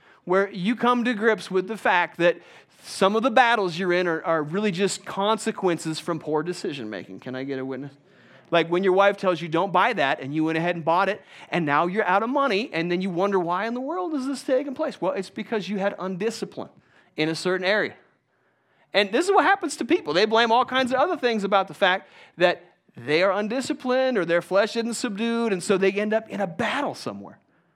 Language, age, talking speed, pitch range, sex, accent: English, 40-59, 230 wpm, 165-230 Hz, male, American